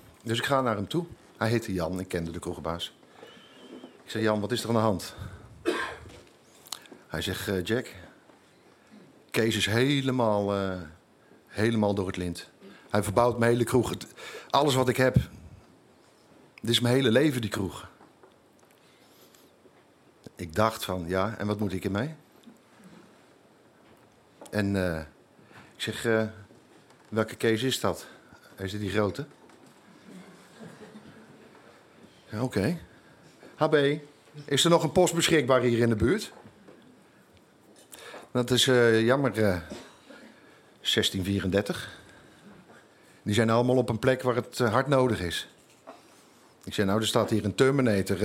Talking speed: 135 wpm